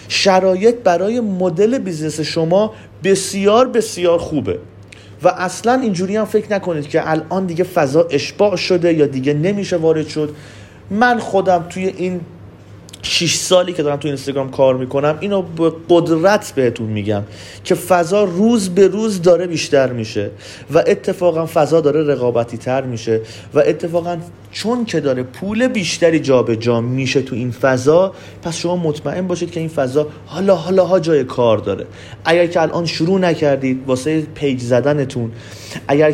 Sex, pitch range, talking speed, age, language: male, 130-180 Hz, 155 wpm, 30-49, Persian